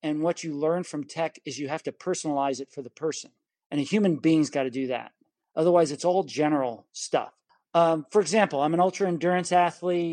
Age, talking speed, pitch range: 40-59, 225 wpm, 150-185 Hz